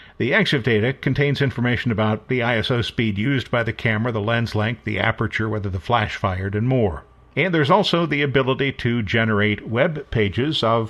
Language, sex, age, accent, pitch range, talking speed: English, male, 50-69, American, 105-140 Hz, 185 wpm